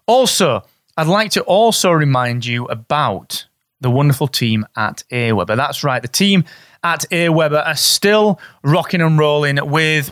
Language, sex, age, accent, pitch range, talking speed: English, male, 30-49, British, 130-170 Hz, 150 wpm